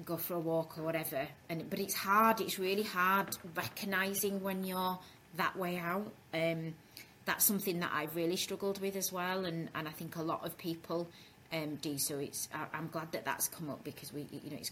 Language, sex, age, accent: English, female, 30-49, British